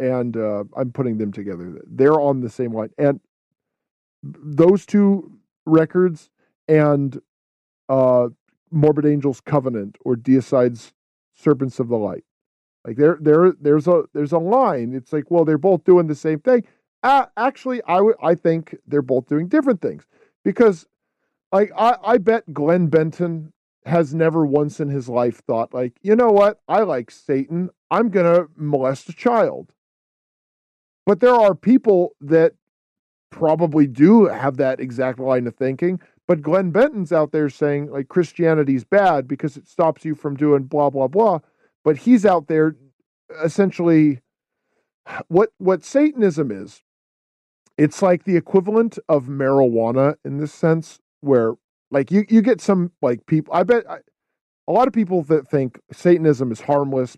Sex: male